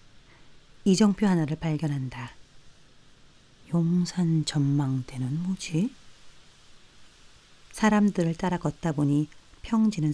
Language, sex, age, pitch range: Korean, female, 40-59, 140-200 Hz